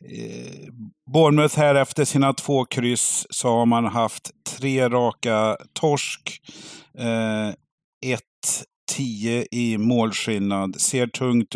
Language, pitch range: Swedish, 105-130 Hz